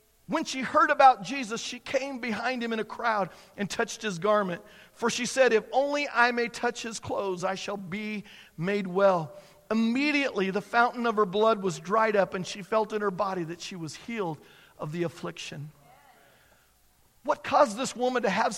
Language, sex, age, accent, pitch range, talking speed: English, male, 50-69, American, 210-270 Hz, 190 wpm